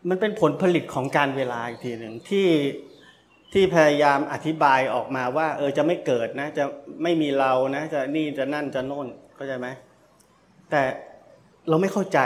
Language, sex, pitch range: Thai, male, 135-165 Hz